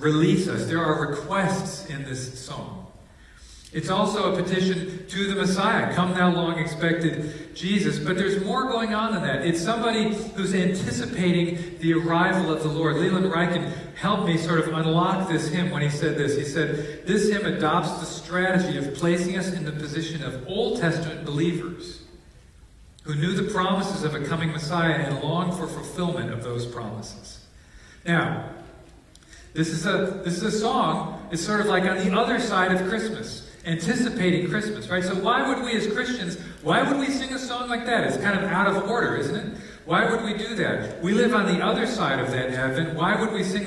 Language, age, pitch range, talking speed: English, 40-59, 160-200 Hz, 195 wpm